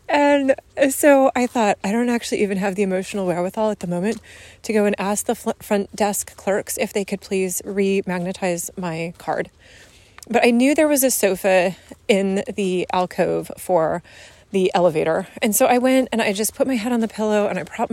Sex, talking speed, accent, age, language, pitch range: female, 200 wpm, American, 30-49, English, 190-245 Hz